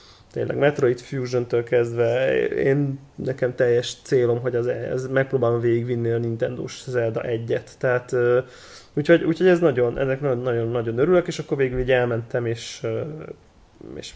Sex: male